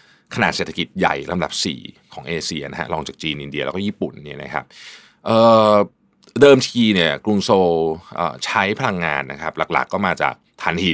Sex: male